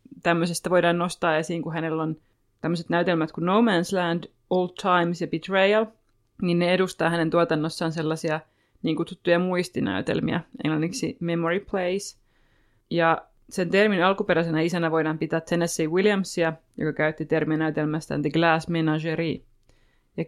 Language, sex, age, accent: Finnish, female, 20-39, native